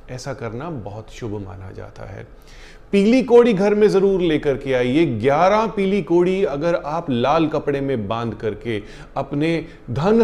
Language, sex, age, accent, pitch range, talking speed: Hindi, male, 30-49, native, 115-180 Hz, 160 wpm